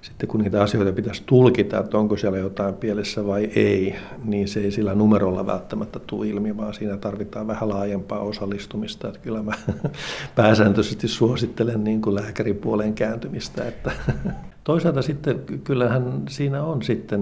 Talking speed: 145 wpm